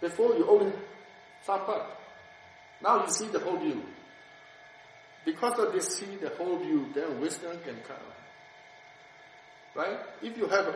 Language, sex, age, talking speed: English, male, 60-79, 145 wpm